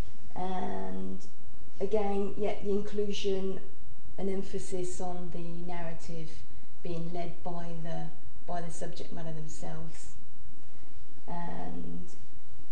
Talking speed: 100 wpm